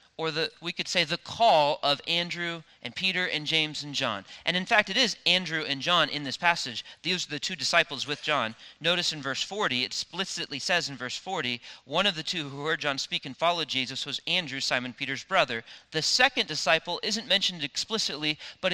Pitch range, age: 150-190 Hz, 40-59